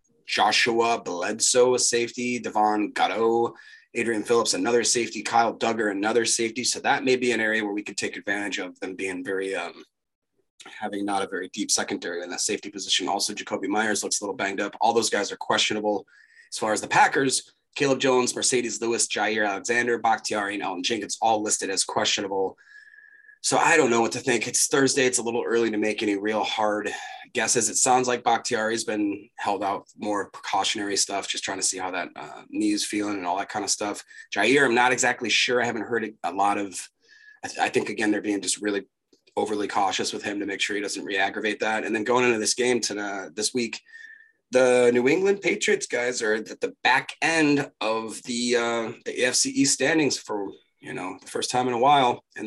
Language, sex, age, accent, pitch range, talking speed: English, male, 30-49, American, 105-135 Hz, 210 wpm